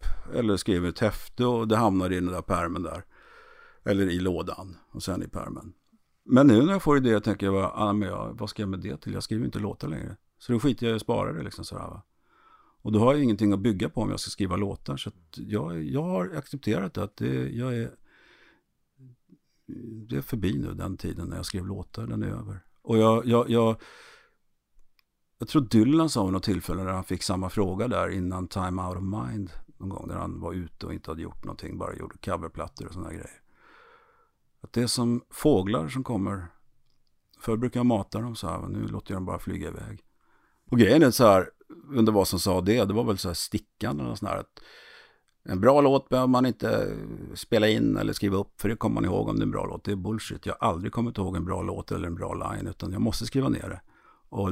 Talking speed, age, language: 235 wpm, 50-69, Swedish